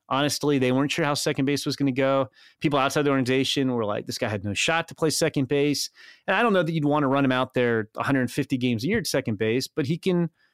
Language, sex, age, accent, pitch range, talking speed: English, male, 30-49, American, 125-150 Hz, 275 wpm